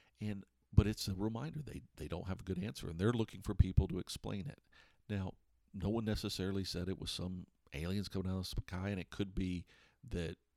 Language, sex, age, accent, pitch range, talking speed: English, male, 50-69, American, 85-105 Hz, 220 wpm